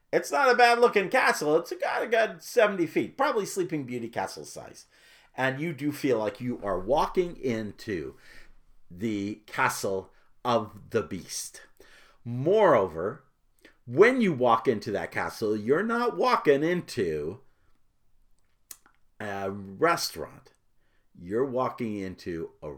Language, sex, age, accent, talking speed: English, male, 50-69, American, 125 wpm